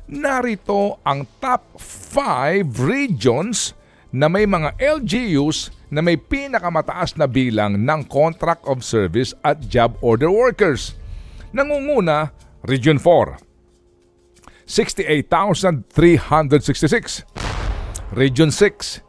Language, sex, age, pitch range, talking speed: Filipino, male, 50-69, 110-175 Hz, 85 wpm